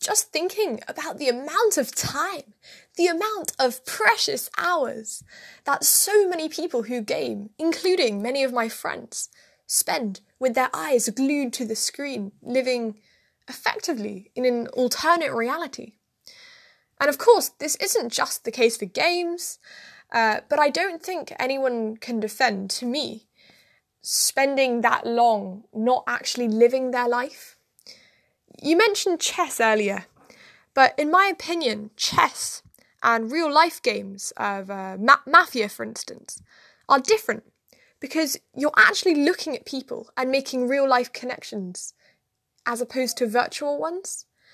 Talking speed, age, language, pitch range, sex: 135 wpm, 10-29, English, 230-315 Hz, female